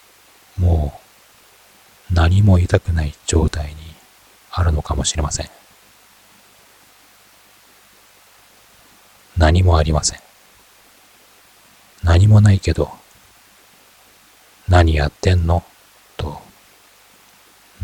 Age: 40-59